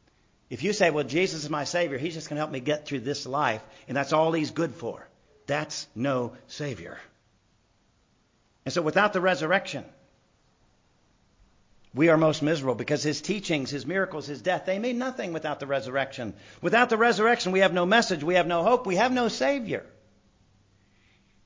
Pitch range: 120-185 Hz